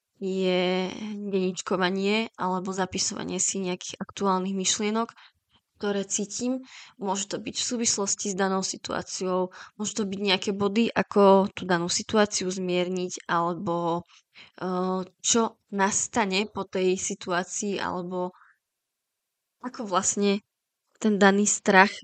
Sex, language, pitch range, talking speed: female, Slovak, 185-215 Hz, 110 wpm